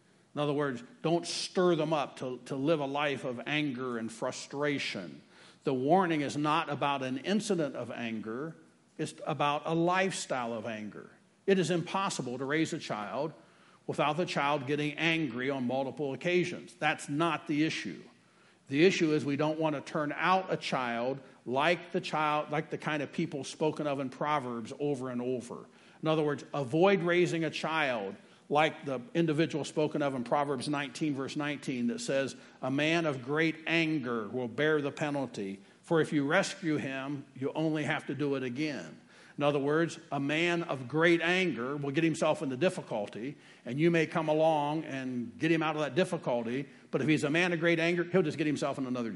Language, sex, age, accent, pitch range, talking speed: English, male, 50-69, American, 140-165 Hz, 185 wpm